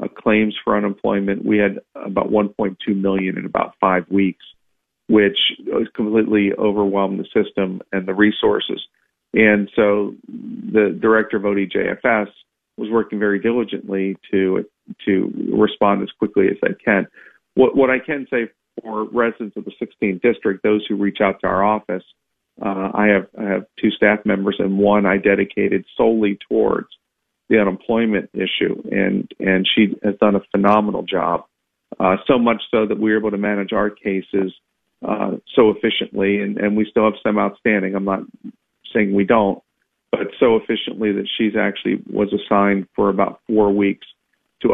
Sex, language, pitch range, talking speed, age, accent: male, English, 100-110 Hz, 165 wpm, 40-59, American